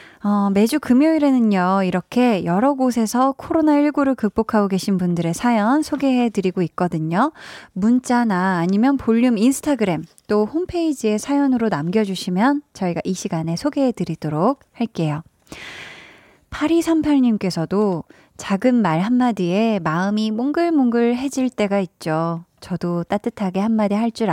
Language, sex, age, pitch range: Korean, female, 20-39, 185-255 Hz